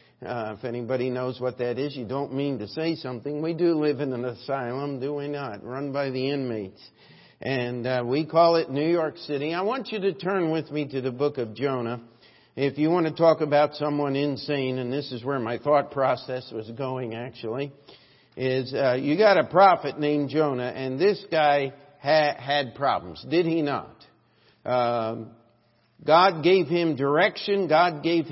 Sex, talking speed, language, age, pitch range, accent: male, 185 wpm, English, 50-69, 130-175 Hz, American